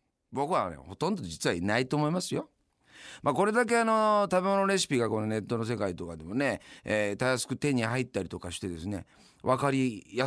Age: 40-59